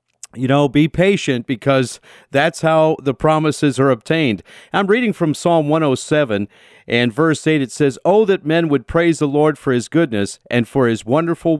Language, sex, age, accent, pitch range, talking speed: English, male, 50-69, American, 110-150 Hz, 180 wpm